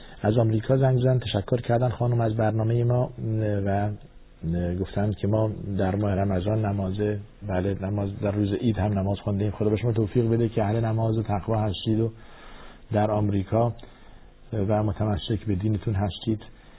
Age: 50-69